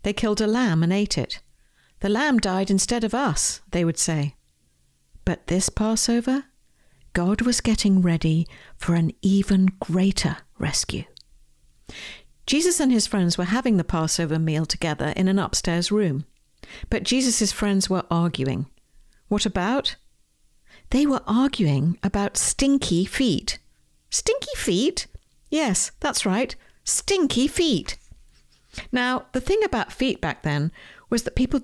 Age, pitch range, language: 60-79, 170-240 Hz, English